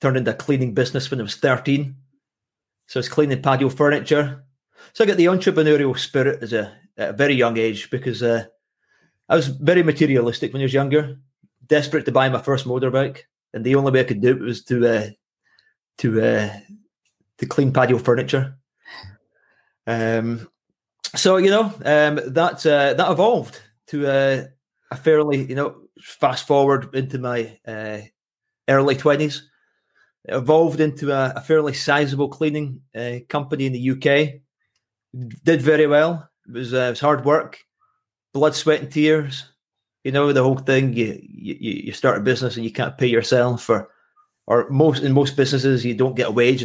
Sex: male